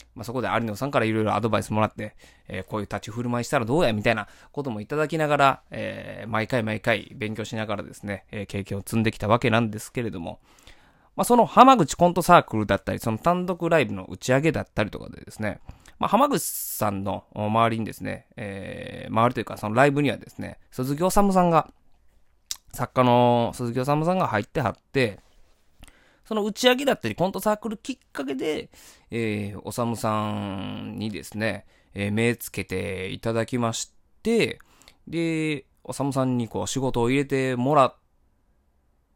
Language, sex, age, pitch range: Japanese, male, 20-39, 105-155 Hz